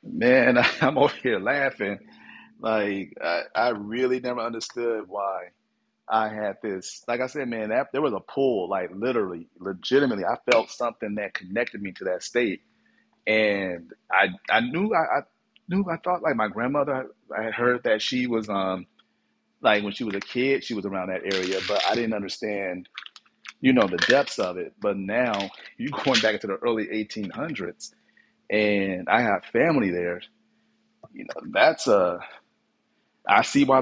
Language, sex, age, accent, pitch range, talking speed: English, male, 40-59, American, 105-150 Hz, 175 wpm